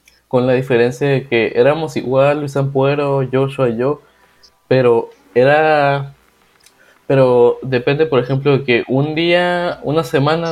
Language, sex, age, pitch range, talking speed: Spanish, male, 20-39, 120-145 Hz, 135 wpm